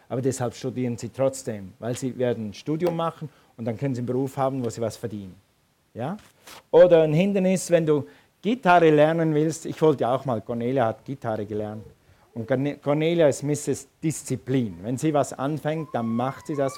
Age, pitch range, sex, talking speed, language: 50-69, 120-150 Hz, male, 190 wpm, German